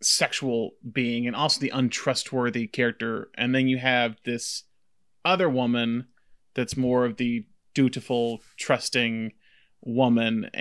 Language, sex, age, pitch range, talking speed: English, male, 30-49, 115-130 Hz, 120 wpm